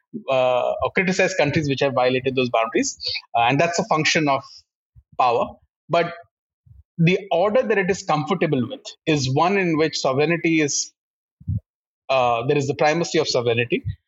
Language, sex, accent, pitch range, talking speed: English, male, Indian, 125-170 Hz, 160 wpm